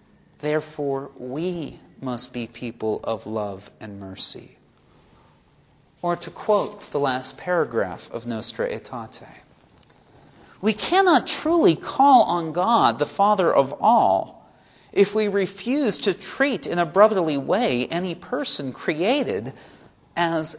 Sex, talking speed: male, 120 wpm